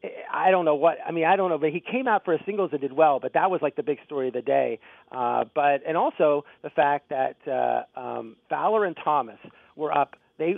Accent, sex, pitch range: American, male, 140-170 Hz